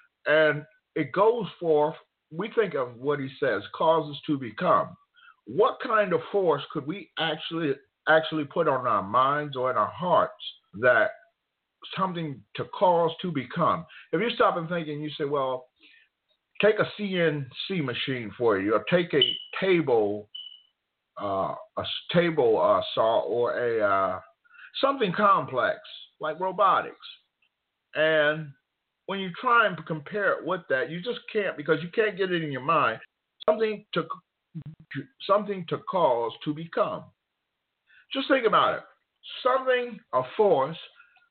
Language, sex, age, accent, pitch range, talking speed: English, male, 50-69, American, 150-210 Hz, 145 wpm